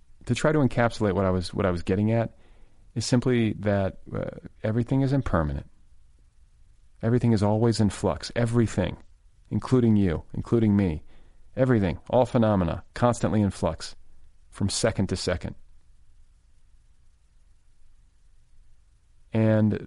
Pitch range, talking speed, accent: 80-115 Hz, 120 wpm, American